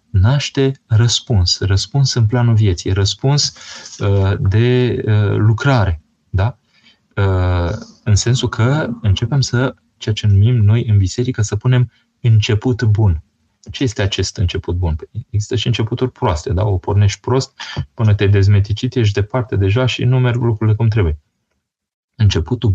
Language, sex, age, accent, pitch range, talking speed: Romanian, male, 20-39, native, 95-120 Hz, 130 wpm